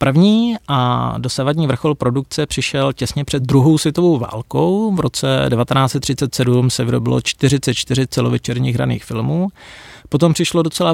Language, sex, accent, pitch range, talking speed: Czech, male, native, 120-150 Hz, 125 wpm